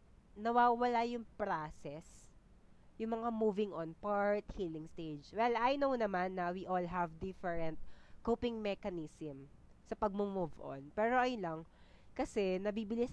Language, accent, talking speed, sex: Filipino, native, 135 wpm, female